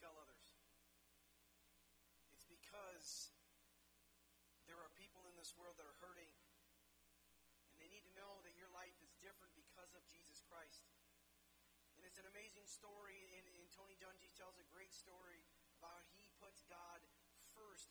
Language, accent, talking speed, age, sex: English, American, 155 wpm, 40-59, male